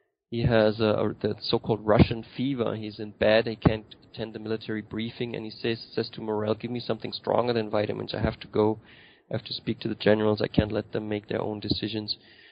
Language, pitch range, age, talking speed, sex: English, 110-120 Hz, 20-39, 225 wpm, male